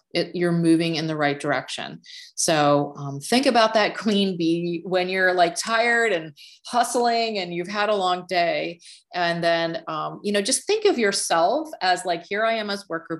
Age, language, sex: 30-49, English, female